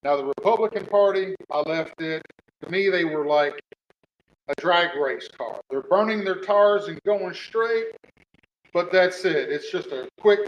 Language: English